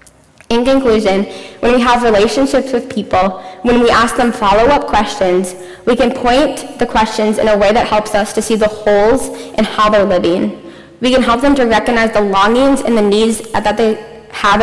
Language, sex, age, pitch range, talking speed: English, female, 10-29, 200-240 Hz, 195 wpm